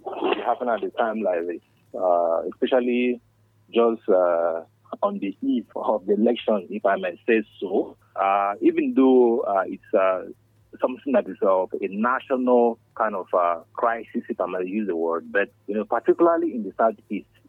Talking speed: 175 wpm